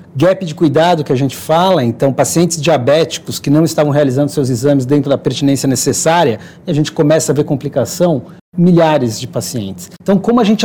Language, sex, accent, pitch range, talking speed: Portuguese, male, Brazilian, 145-180 Hz, 185 wpm